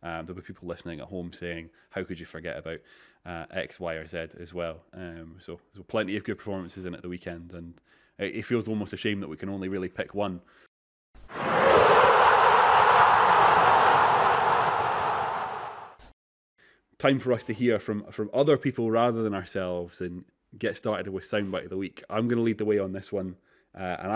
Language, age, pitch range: English, 20-39, 95-120 Hz